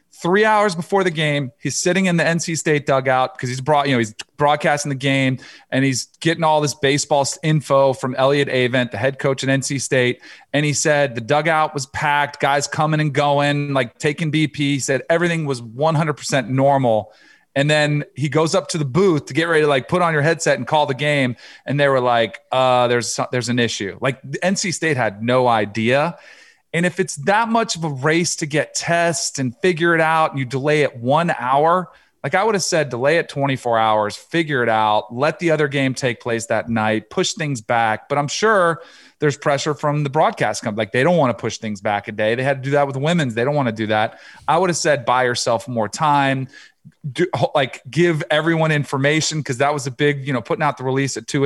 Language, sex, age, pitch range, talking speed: English, male, 40-59, 130-160 Hz, 225 wpm